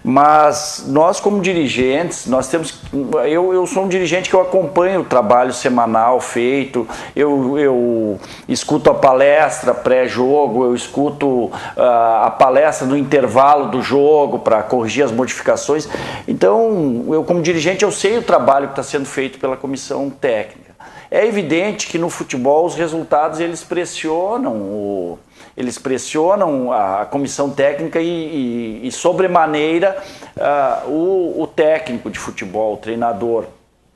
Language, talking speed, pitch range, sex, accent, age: Portuguese, 140 wpm, 125-170 Hz, male, Brazilian, 50-69